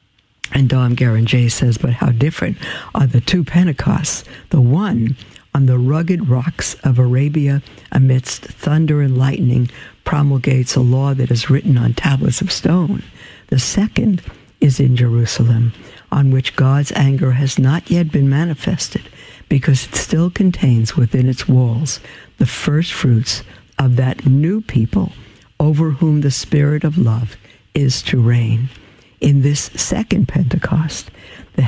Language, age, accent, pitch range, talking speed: English, 60-79, American, 125-150 Hz, 140 wpm